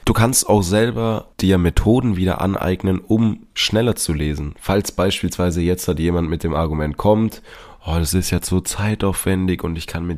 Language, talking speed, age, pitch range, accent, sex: German, 185 wpm, 20-39, 80-100 Hz, German, male